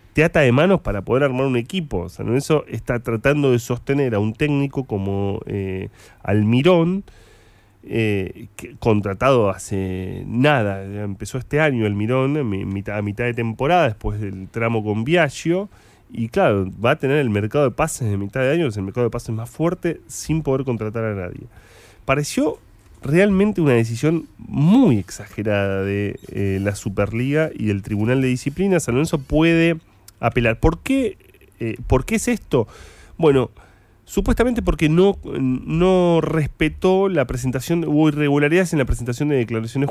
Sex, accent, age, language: male, Argentinian, 30-49, Spanish